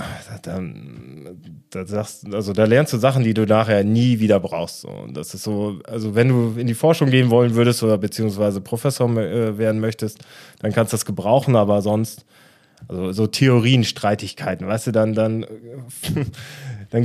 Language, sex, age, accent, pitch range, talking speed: German, male, 20-39, German, 105-130 Hz, 165 wpm